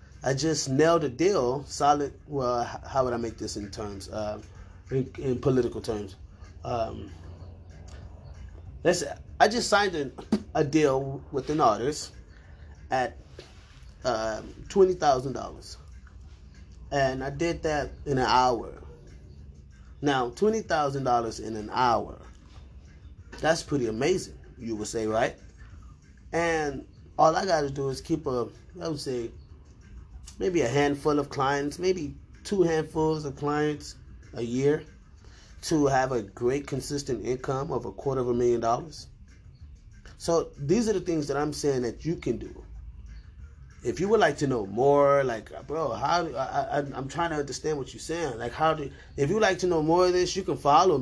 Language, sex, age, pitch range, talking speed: English, male, 20-39, 95-145 Hz, 155 wpm